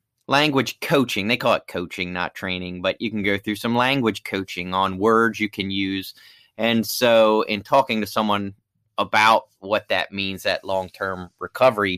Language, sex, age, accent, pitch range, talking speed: English, male, 30-49, American, 95-115 Hz, 160 wpm